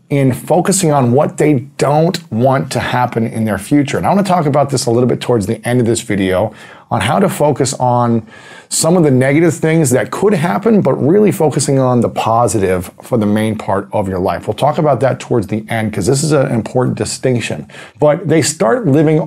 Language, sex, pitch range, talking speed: English, male, 110-145 Hz, 220 wpm